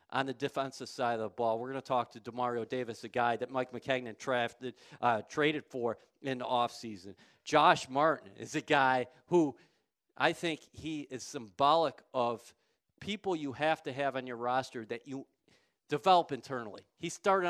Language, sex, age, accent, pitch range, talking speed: English, male, 40-59, American, 120-140 Hz, 175 wpm